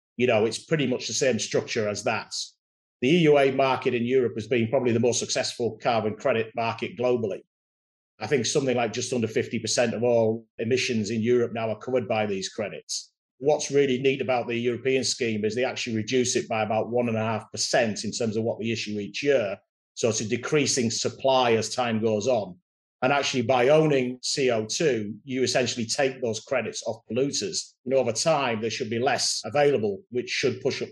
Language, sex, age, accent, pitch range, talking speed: English, male, 40-59, British, 115-135 Hz, 190 wpm